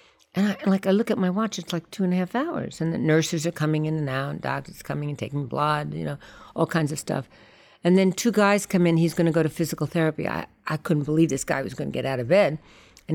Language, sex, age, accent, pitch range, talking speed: English, female, 60-79, American, 140-180 Hz, 280 wpm